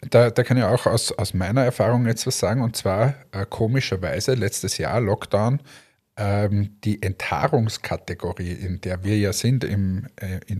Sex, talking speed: male, 165 wpm